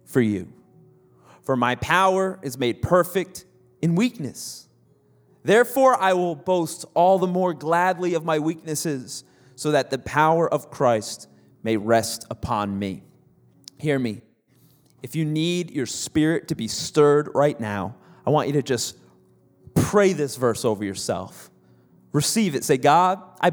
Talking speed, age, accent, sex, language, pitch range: 150 wpm, 30-49, American, male, English, 135-200 Hz